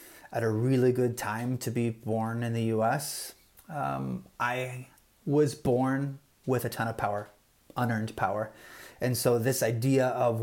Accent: American